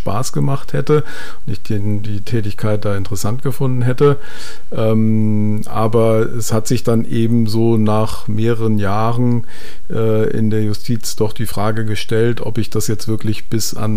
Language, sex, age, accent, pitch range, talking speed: German, male, 50-69, German, 105-120 Hz, 165 wpm